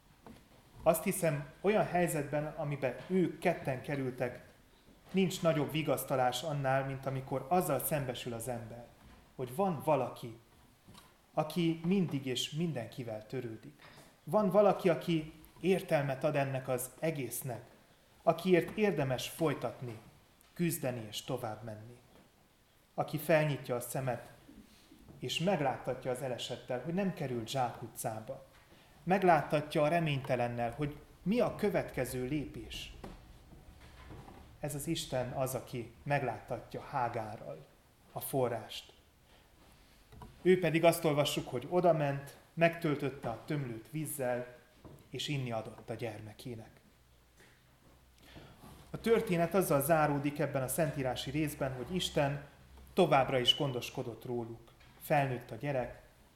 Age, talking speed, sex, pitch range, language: 30-49, 110 wpm, male, 120-160 Hz, Hungarian